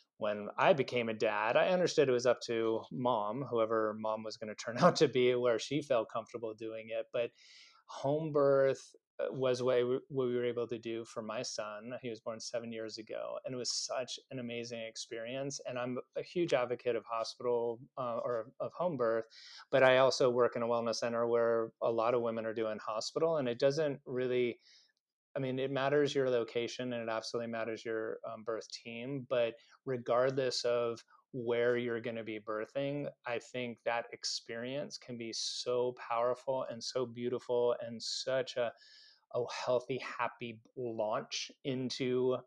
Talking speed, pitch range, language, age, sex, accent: 180 wpm, 115-130 Hz, English, 30-49, male, American